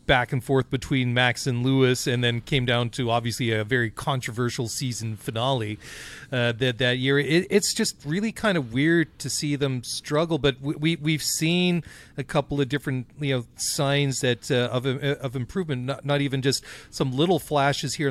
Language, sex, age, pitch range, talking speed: English, male, 40-59, 125-145 Hz, 190 wpm